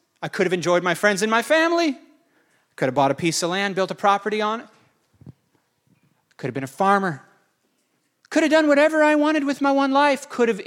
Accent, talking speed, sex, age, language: American, 215 wpm, male, 40-59, English